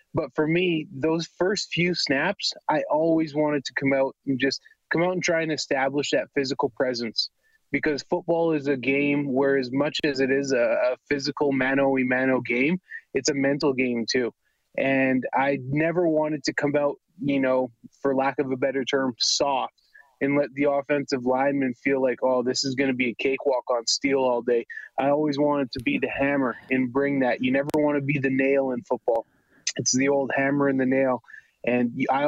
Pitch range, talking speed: 130-150 Hz, 205 wpm